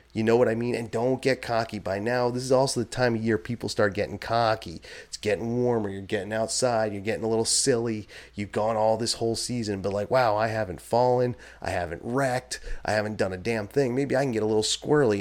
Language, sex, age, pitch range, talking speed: English, male, 30-49, 105-130 Hz, 240 wpm